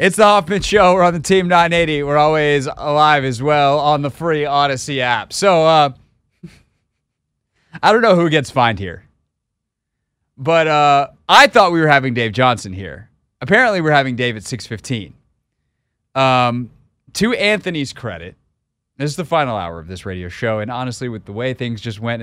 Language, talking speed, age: English, 175 wpm, 30-49